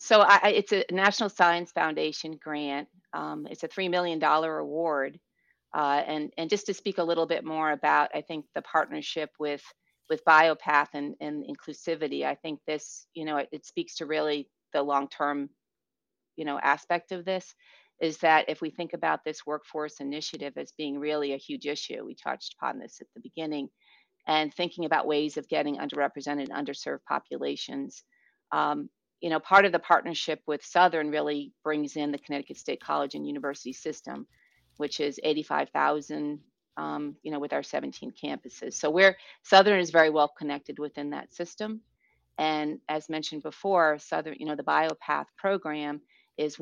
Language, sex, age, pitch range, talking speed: English, female, 40-59, 145-170 Hz, 175 wpm